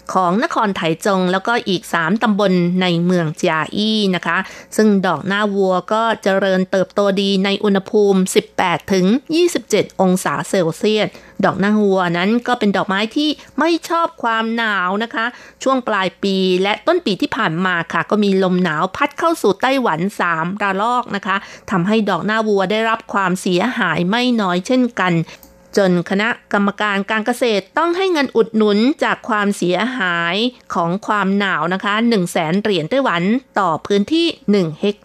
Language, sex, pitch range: Thai, female, 185-230 Hz